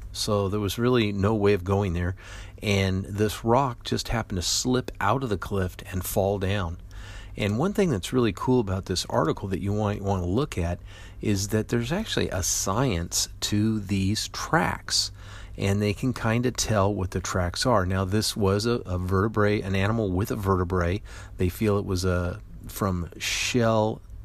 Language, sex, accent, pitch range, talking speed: English, male, American, 95-105 Hz, 190 wpm